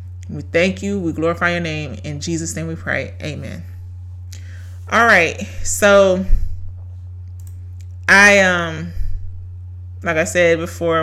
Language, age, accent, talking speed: English, 30-49, American, 120 wpm